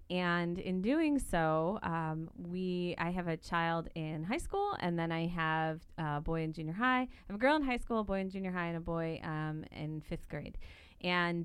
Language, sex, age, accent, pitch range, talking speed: English, female, 30-49, American, 160-195 Hz, 220 wpm